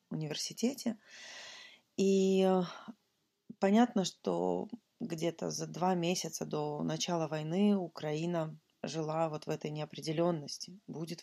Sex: female